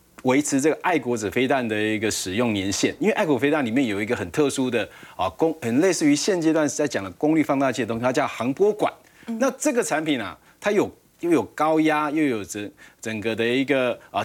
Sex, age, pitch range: male, 30-49, 115-165 Hz